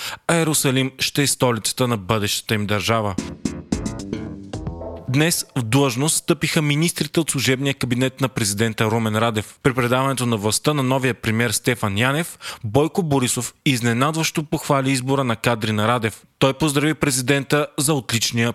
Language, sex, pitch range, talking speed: Bulgarian, male, 120-145 Hz, 140 wpm